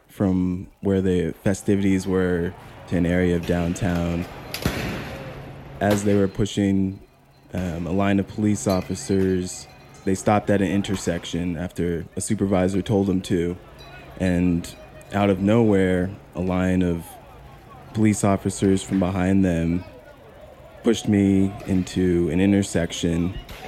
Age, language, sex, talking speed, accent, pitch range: 20-39, English, male, 120 wpm, American, 90-105 Hz